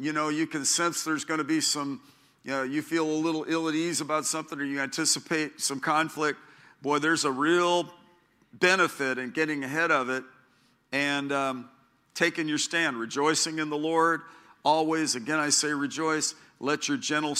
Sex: male